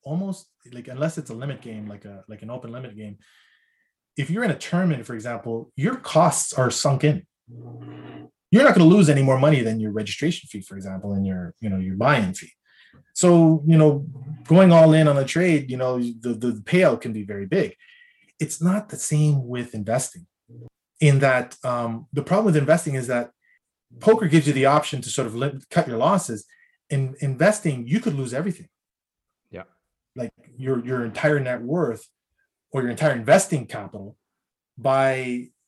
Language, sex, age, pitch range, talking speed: English, male, 20-39, 120-155 Hz, 185 wpm